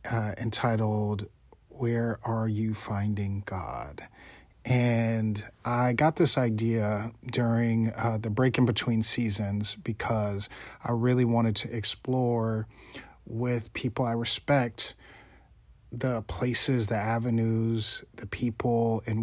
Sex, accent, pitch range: male, American, 110-125 Hz